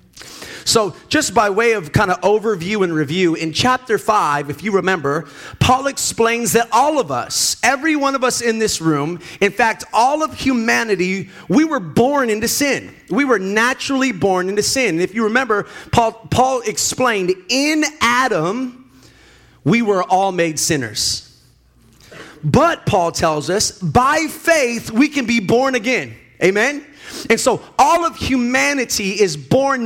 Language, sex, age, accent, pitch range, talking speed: English, male, 30-49, American, 175-270 Hz, 160 wpm